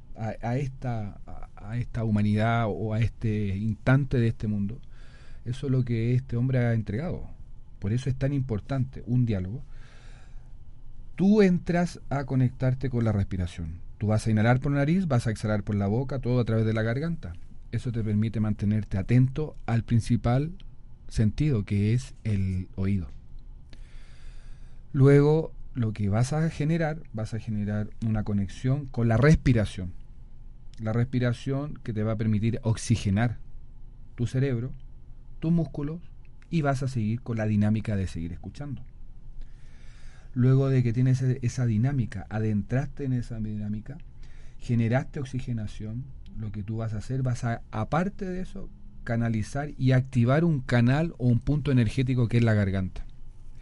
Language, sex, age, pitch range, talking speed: Spanish, male, 40-59, 105-130 Hz, 150 wpm